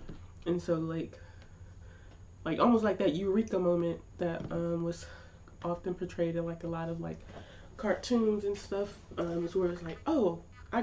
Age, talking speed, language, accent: 20-39, 165 wpm, English, American